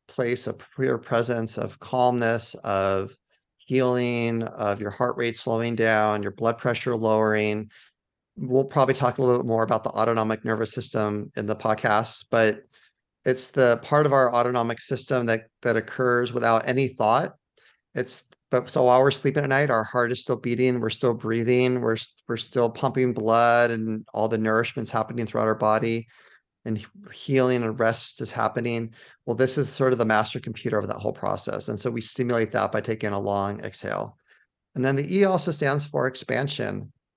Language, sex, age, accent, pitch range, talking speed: English, male, 30-49, American, 110-130 Hz, 180 wpm